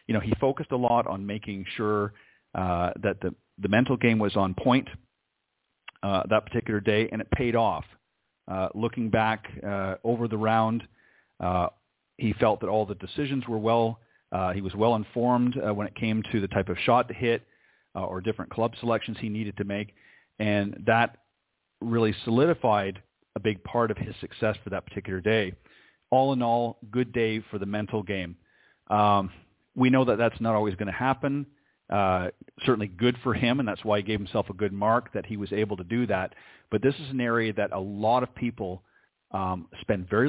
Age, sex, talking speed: 40-59, male, 200 wpm